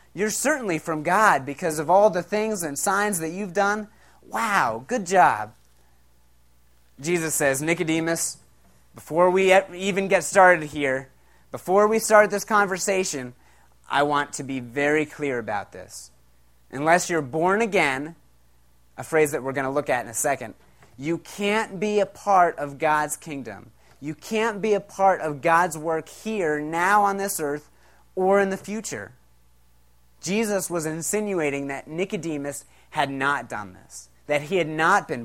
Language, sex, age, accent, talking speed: English, male, 30-49, American, 160 wpm